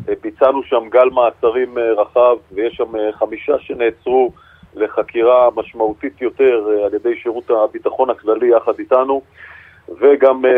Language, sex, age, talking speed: Hebrew, male, 40-59, 115 wpm